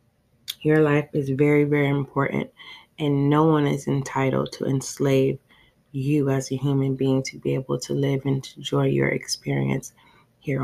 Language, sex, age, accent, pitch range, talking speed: English, female, 20-39, American, 130-150 Hz, 160 wpm